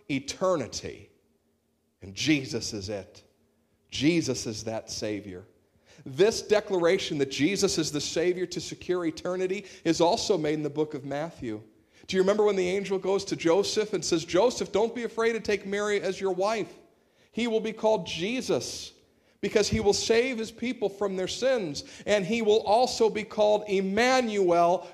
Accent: American